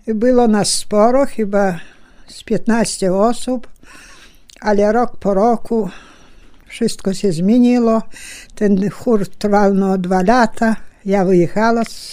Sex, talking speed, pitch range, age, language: female, 110 wpm, 195-235 Hz, 60-79, Polish